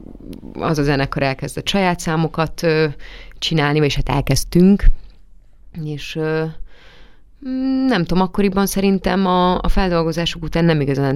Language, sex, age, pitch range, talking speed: Hungarian, female, 30-49, 135-170 Hz, 125 wpm